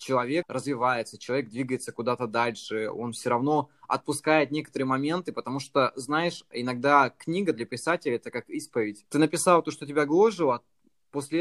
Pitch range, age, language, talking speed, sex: 125-150 Hz, 20-39, Russian, 155 wpm, male